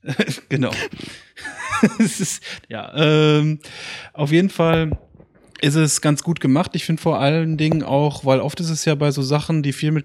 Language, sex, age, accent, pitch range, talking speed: German, male, 30-49, German, 130-145 Hz, 185 wpm